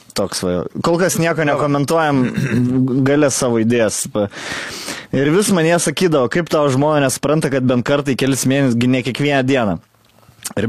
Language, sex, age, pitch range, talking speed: English, male, 20-39, 110-135 Hz, 145 wpm